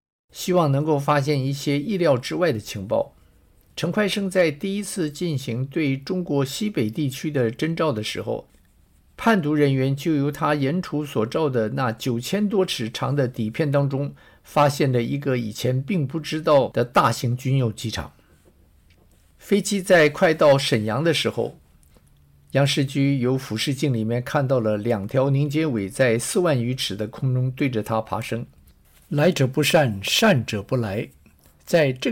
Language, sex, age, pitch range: Chinese, male, 50-69, 115-150 Hz